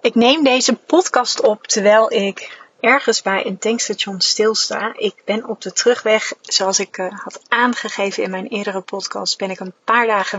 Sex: female